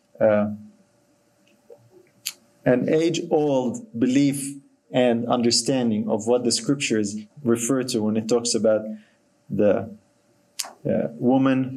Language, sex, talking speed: English, male, 95 wpm